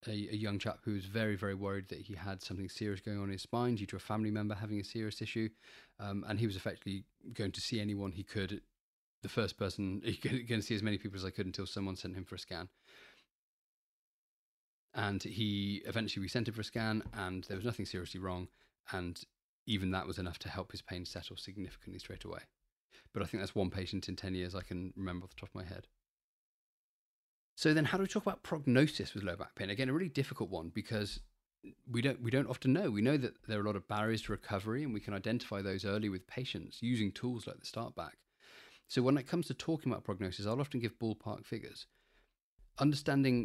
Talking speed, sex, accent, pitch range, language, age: 235 wpm, male, British, 95-115 Hz, English, 20-39